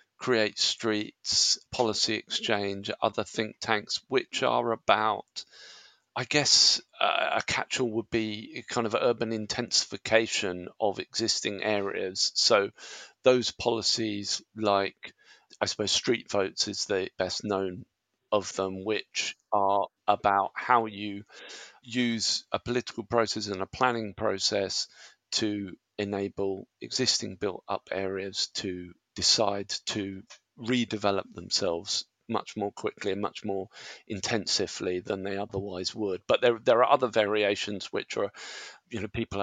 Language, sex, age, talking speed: English, male, 40-59, 130 wpm